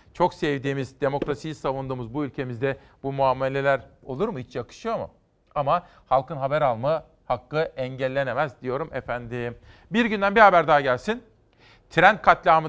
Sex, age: male, 40-59